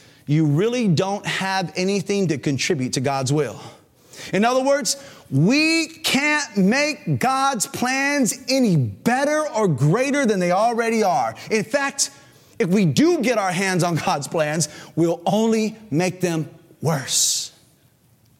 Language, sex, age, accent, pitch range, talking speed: English, male, 30-49, American, 170-250 Hz, 135 wpm